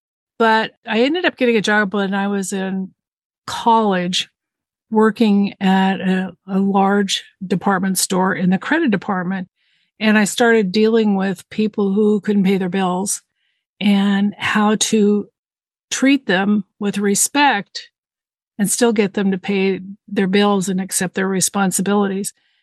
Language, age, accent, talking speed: English, 50-69, American, 140 wpm